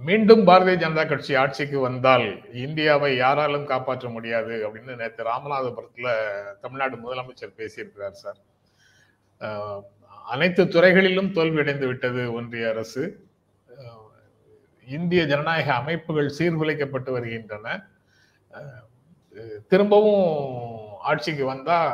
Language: Tamil